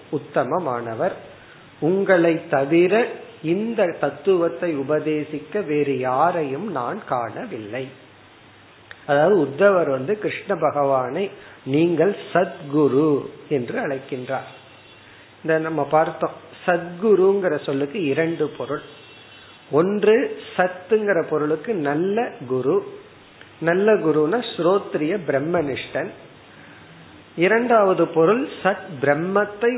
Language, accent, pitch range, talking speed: Tamil, native, 140-190 Hz, 70 wpm